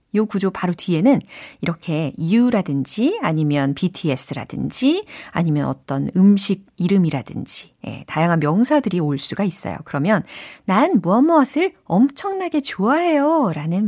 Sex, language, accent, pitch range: female, Korean, native, 165-255 Hz